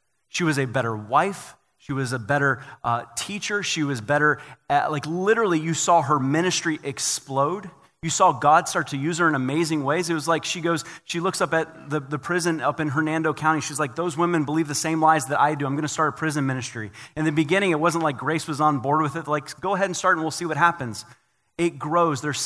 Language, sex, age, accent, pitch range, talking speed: English, male, 30-49, American, 125-165 Hz, 245 wpm